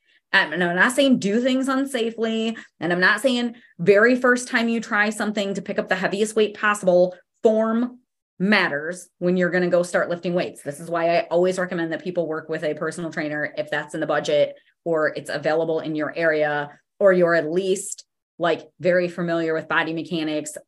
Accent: American